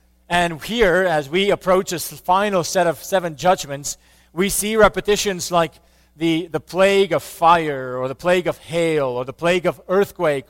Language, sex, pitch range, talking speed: English, male, 135-185 Hz, 170 wpm